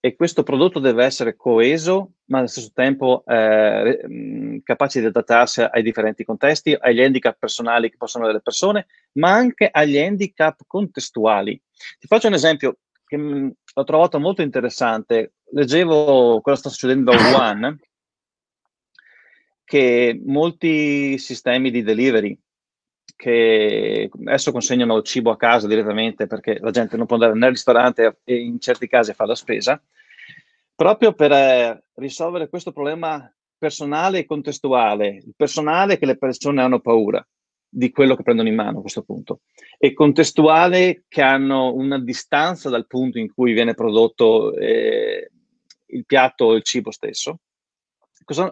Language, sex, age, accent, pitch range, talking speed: Italian, male, 30-49, native, 120-165 Hz, 145 wpm